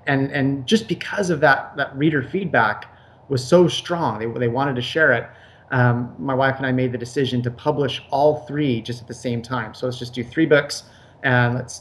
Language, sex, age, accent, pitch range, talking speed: English, male, 30-49, American, 120-145 Hz, 220 wpm